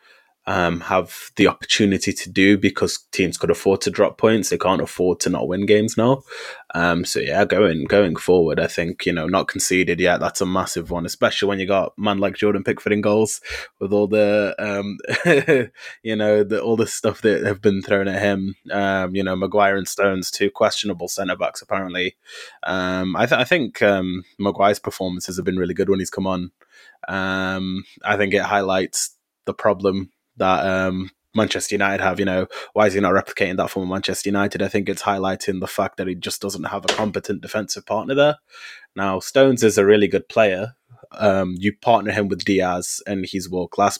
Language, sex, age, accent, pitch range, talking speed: English, male, 20-39, British, 95-105 Hz, 200 wpm